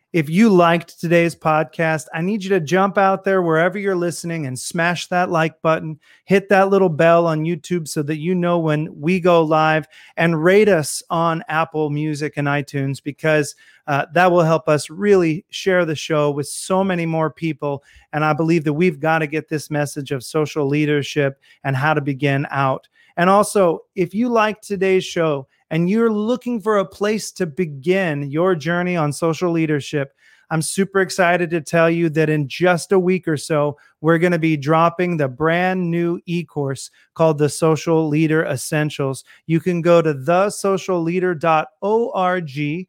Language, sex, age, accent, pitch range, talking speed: English, male, 30-49, American, 150-180 Hz, 180 wpm